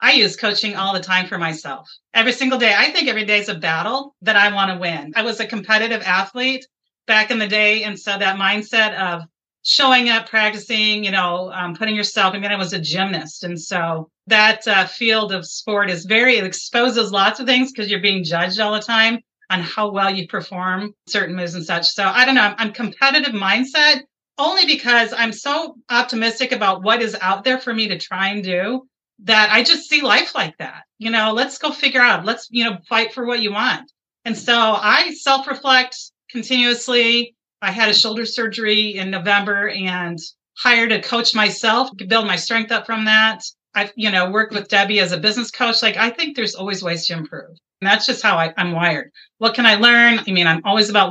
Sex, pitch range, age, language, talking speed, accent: female, 185-235 Hz, 40-59, English, 215 wpm, American